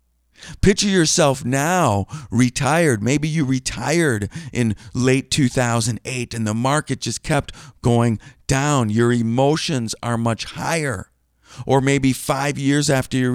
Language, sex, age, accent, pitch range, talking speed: English, male, 50-69, American, 115-155 Hz, 125 wpm